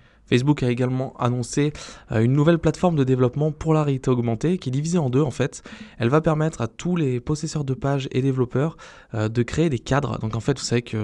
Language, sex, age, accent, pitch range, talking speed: French, male, 20-39, French, 110-130 Hz, 235 wpm